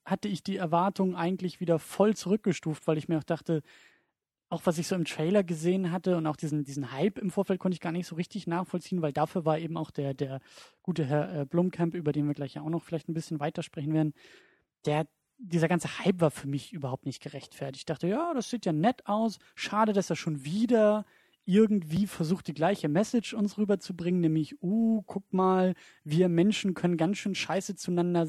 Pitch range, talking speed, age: 150-185 Hz, 210 wpm, 30-49